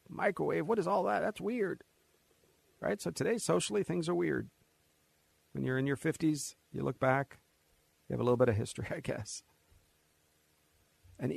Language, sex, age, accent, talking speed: English, male, 40-59, American, 170 wpm